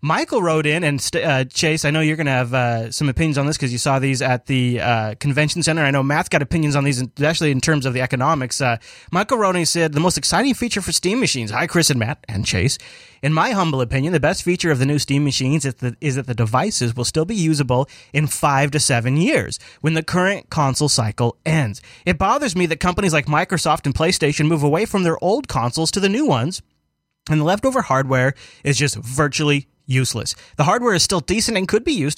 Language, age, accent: English, 30-49, American